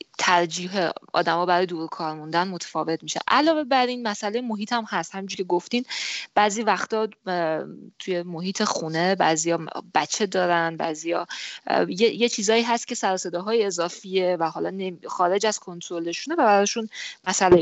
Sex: female